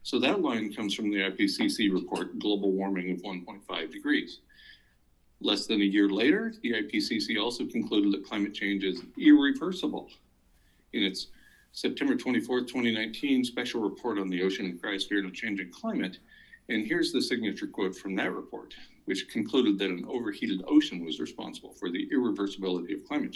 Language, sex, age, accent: English, male, 50-69, American